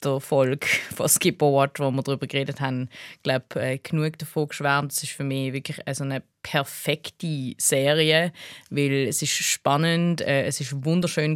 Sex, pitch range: female, 135-160 Hz